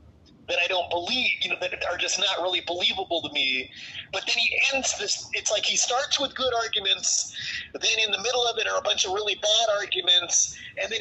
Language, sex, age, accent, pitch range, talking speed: English, male, 30-49, American, 165-235 Hz, 225 wpm